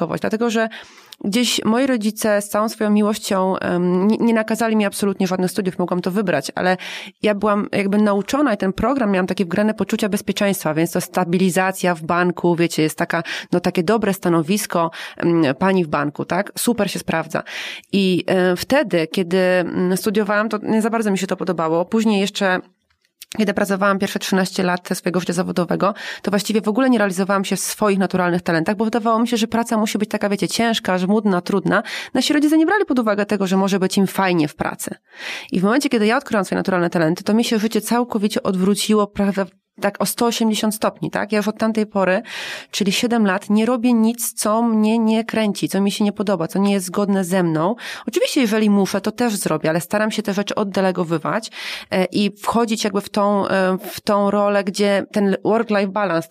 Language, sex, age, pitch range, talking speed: Polish, female, 30-49, 185-220 Hz, 190 wpm